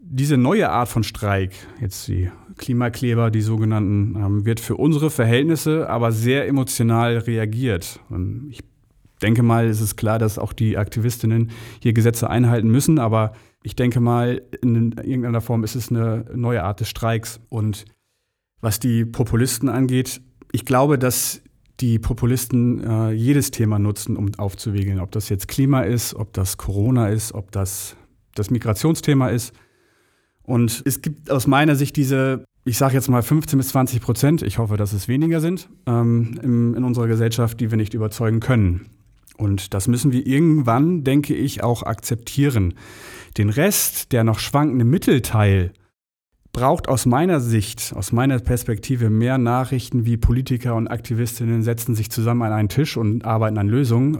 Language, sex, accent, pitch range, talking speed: German, male, German, 110-125 Hz, 160 wpm